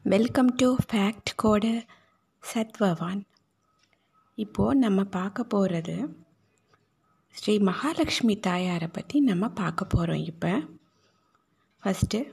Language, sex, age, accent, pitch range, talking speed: Tamil, female, 20-39, native, 180-245 Hz, 90 wpm